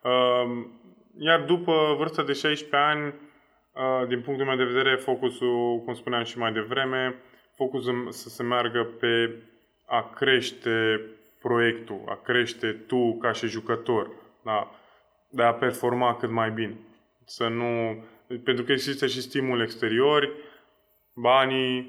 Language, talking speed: Romanian, 130 wpm